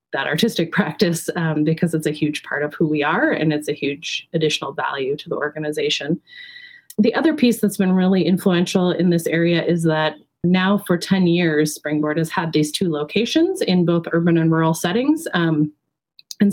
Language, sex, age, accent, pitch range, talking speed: English, female, 30-49, American, 155-195 Hz, 190 wpm